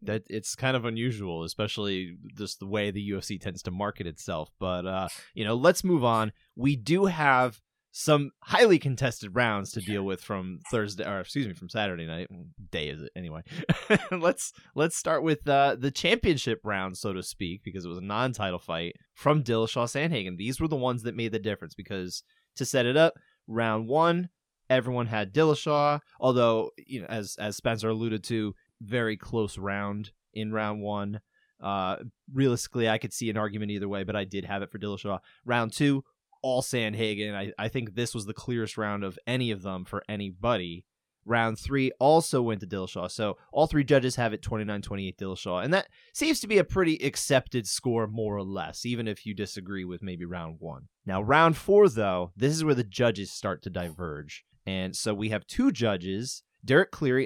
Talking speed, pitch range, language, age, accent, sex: 195 wpm, 100-130 Hz, English, 20-39, American, male